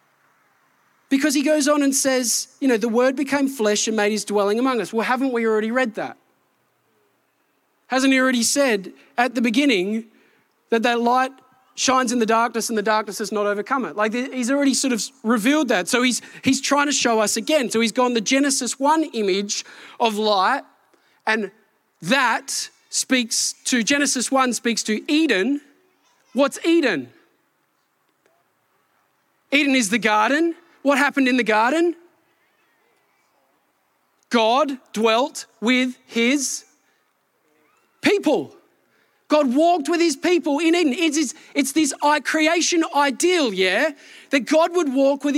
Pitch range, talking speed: 235-300 Hz, 145 wpm